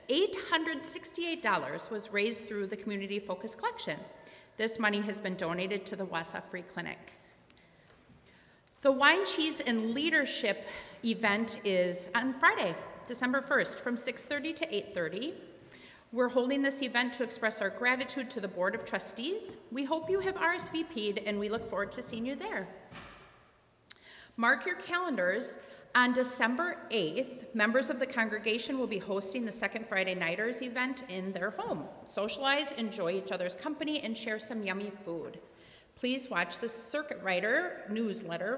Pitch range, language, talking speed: 200-270 Hz, English, 150 wpm